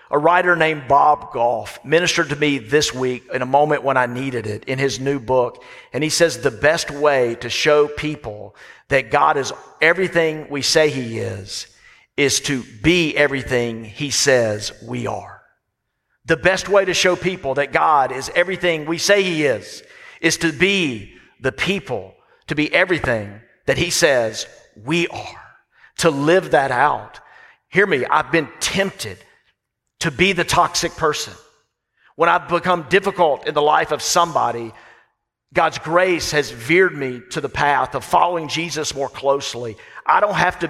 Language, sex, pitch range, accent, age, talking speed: English, male, 125-170 Hz, American, 50-69, 165 wpm